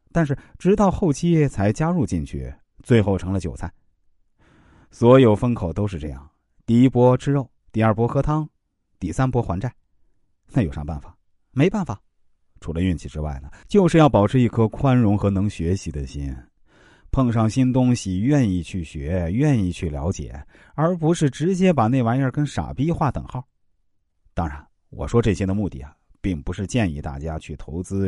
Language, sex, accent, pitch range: Chinese, male, native, 85-130 Hz